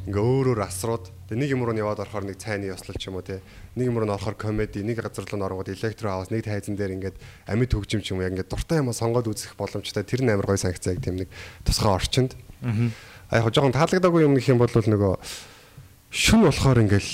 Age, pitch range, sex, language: 30-49, 95-120 Hz, male, Korean